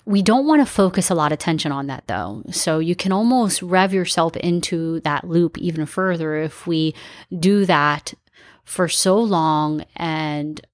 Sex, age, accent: female, 30-49, American